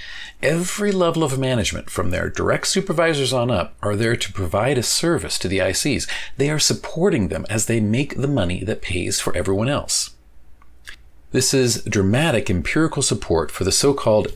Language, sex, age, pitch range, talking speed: English, male, 40-59, 95-130 Hz, 170 wpm